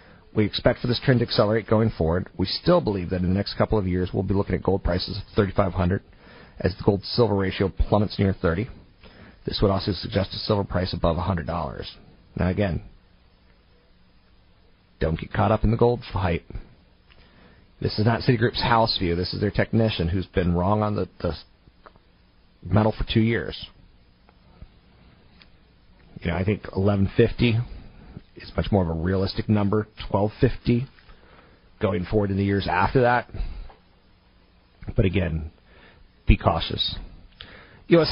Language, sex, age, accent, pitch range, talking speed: English, male, 40-59, American, 90-110 Hz, 155 wpm